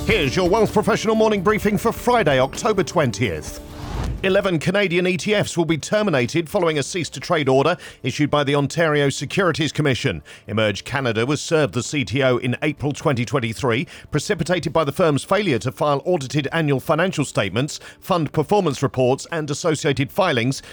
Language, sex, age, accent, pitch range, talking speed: English, male, 40-59, British, 125-160 Hz, 150 wpm